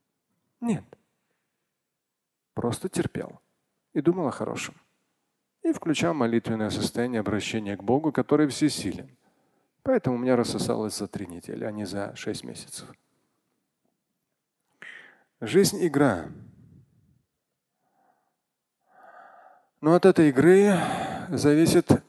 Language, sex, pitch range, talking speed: Russian, male, 120-185 Hz, 95 wpm